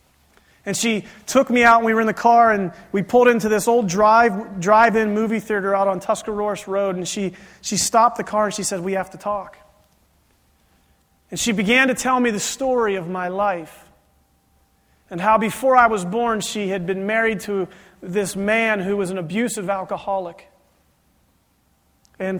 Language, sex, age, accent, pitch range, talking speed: English, male, 30-49, American, 165-215 Hz, 180 wpm